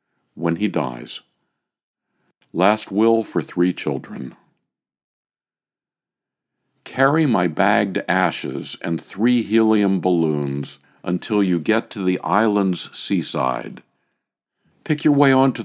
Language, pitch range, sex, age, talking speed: English, 80-110 Hz, male, 60-79, 105 wpm